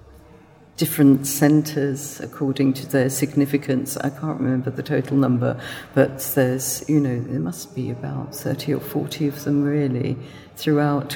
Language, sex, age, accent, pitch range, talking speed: English, female, 50-69, British, 140-165 Hz, 145 wpm